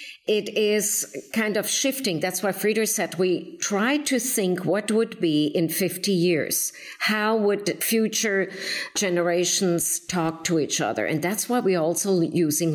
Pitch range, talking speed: 175-225 Hz, 155 wpm